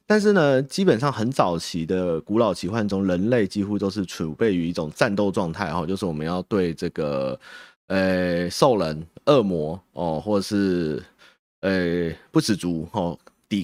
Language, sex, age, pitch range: Chinese, male, 30-49, 90-120 Hz